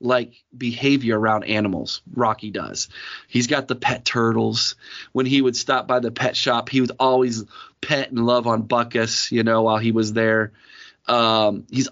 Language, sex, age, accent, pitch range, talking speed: English, male, 30-49, American, 115-145 Hz, 175 wpm